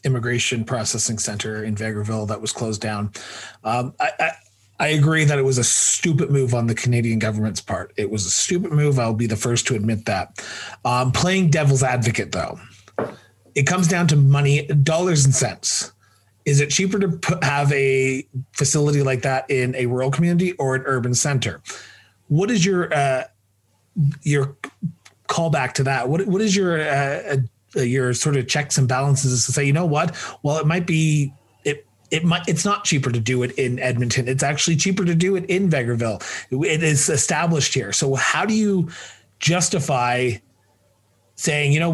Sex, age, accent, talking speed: male, 30-49, American, 185 wpm